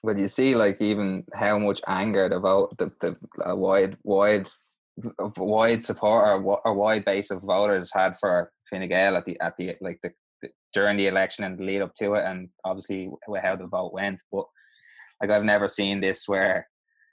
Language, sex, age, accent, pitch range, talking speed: English, male, 20-39, Irish, 95-105 Hz, 190 wpm